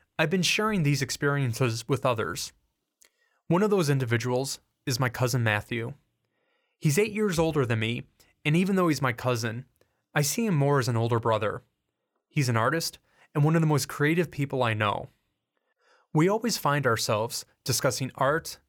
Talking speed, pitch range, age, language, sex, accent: 170 wpm, 120-160 Hz, 20-39, English, male, American